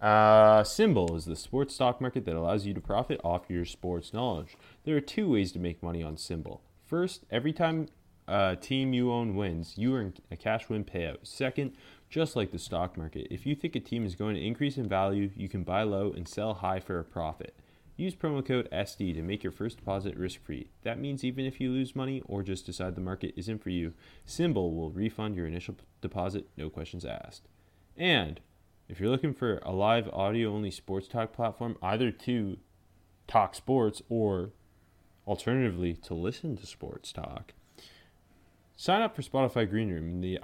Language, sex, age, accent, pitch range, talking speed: English, male, 30-49, American, 90-120 Hz, 190 wpm